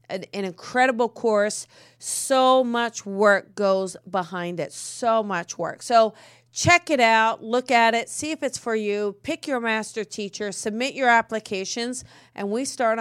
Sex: female